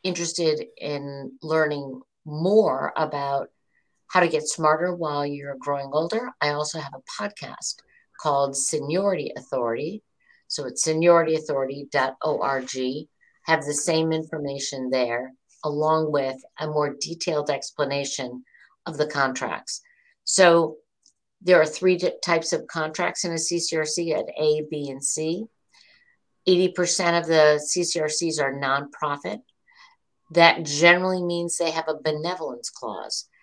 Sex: female